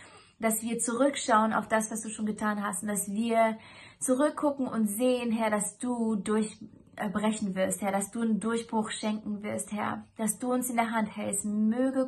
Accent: German